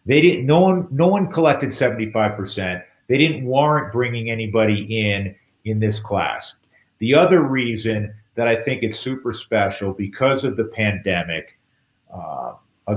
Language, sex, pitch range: English, male, 105-130 Hz